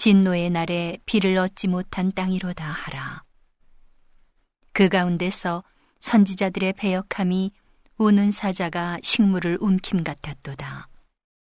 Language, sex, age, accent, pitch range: Korean, female, 40-59, native, 165-195 Hz